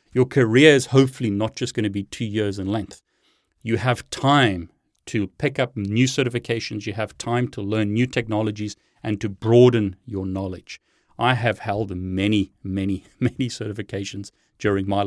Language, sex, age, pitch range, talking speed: English, male, 30-49, 100-125 Hz, 165 wpm